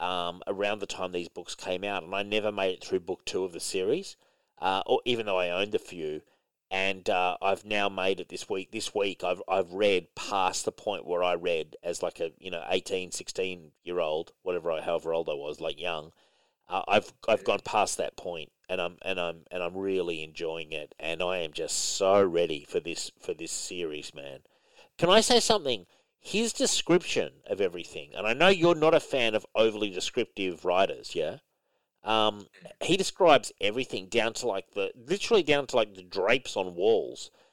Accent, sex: Australian, male